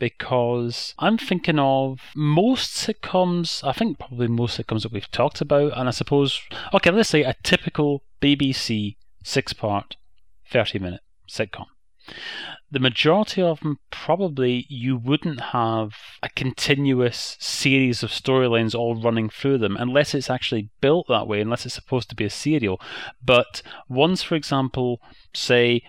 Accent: British